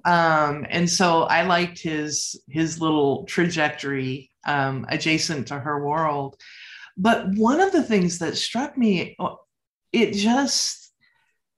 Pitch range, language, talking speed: 155-200 Hz, English, 125 wpm